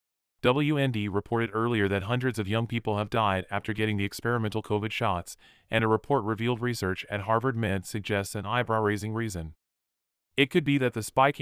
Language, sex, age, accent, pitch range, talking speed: English, male, 30-49, American, 100-120 Hz, 185 wpm